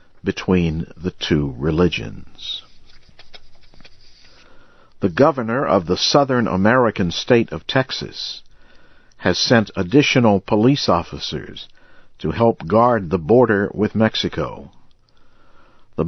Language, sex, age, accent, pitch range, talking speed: English, male, 60-79, American, 90-115 Hz, 95 wpm